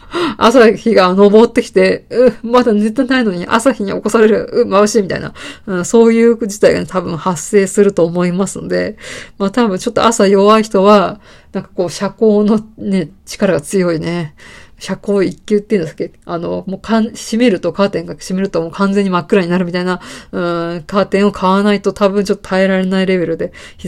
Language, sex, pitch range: Japanese, female, 180-225 Hz